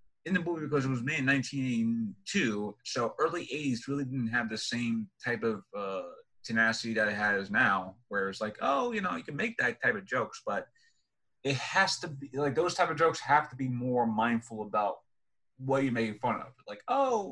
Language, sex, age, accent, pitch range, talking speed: English, male, 30-49, American, 120-155 Hz, 210 wpm